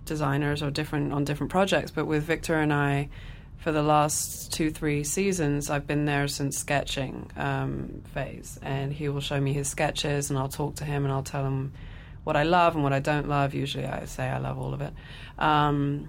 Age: 20-39